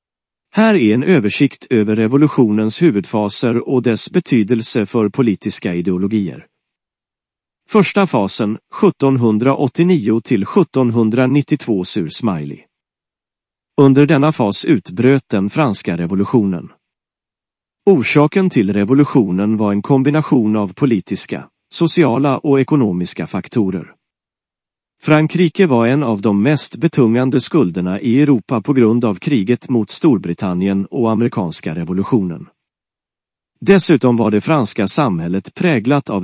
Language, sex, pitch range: English, male, 100-145 Hz